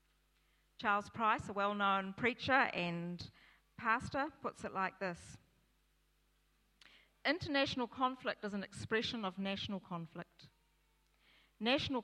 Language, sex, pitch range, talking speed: English, female, 180-220 Hz, 100 wpm